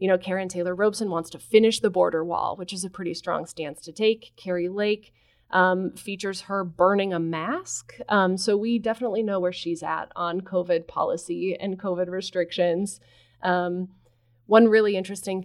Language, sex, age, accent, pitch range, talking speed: English, female, 30-49, American, 170-200 Hz, 175 wpm